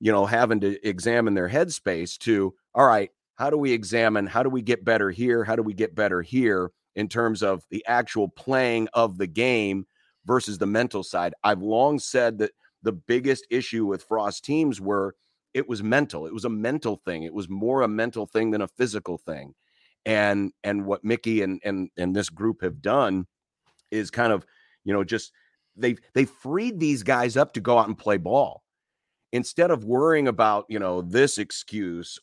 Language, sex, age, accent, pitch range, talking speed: English, male, 40-59, American, 100-125 Hz, 195 wpm